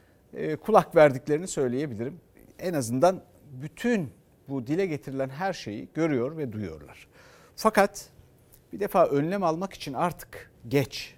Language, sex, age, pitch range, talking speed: Turkish, male, 60-79, 130-180 Hz, 120 wpm